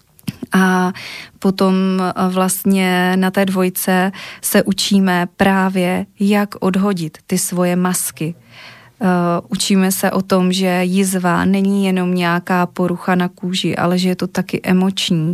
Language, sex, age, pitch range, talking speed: Slovak, female, 20-39, 175-190 Hz, 130 wpm